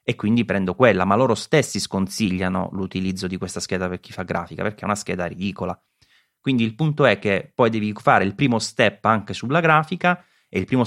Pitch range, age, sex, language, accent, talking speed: 95-120 Hz, 30-49, male, Italian, native, 210 wpm